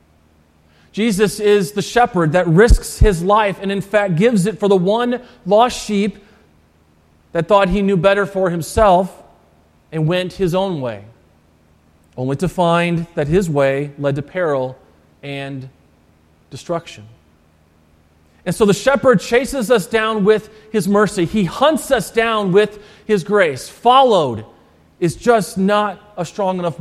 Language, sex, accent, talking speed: English, male, American, 145 wpm